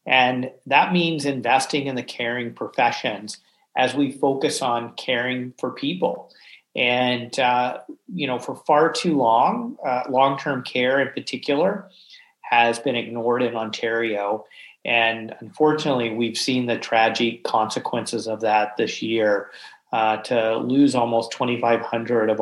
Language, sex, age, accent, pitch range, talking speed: English, male, 40-59, American, 115-140 Hz, 135 wpm